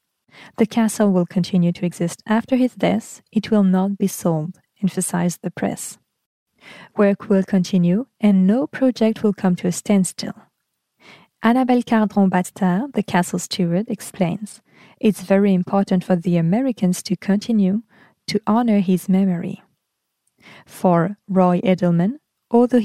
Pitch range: 185-220 Hz